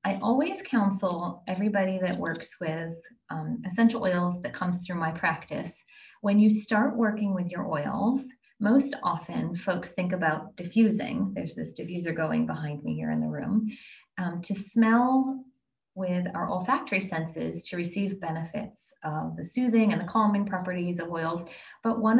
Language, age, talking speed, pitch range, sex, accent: English, 30-49, 160 wpm, 175-225 Hz, female, American